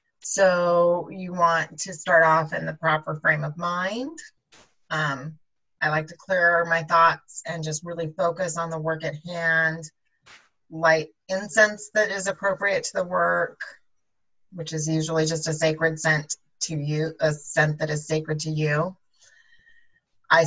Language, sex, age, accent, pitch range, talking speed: English, female, 30-49, American, 160-215 Hz, 155 wpm